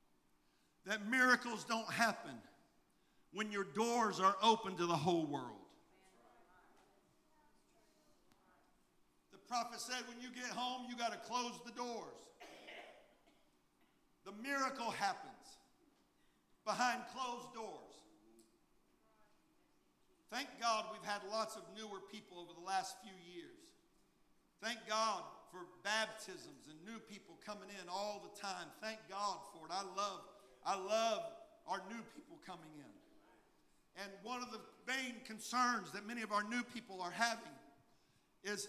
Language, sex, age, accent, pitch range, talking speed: English, male, 50-69, American, 200-245 Hz, 130 wpm